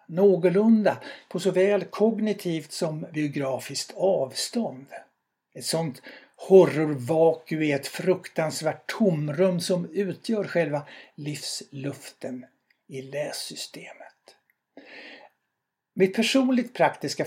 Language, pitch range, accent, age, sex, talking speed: Swedish, 145-200 Hz, native, 60-79, male, 80 wpm